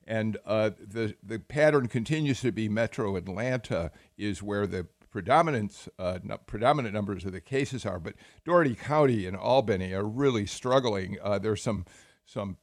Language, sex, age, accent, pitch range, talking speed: English, male, 50-69, American, 100-120 Hz, 150 wpm